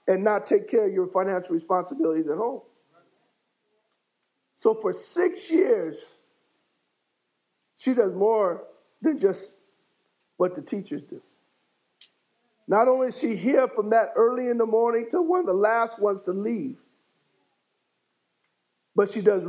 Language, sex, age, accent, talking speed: English, male, 50-69, American, 140 wpm